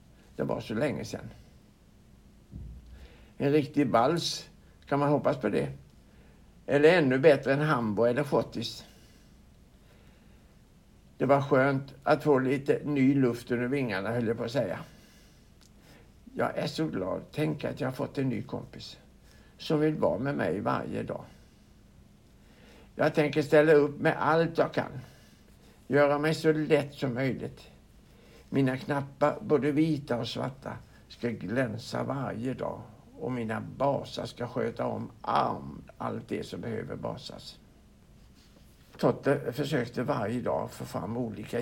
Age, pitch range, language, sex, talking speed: 60-79, 115-145 Hz, Swedish, male, 140 wpm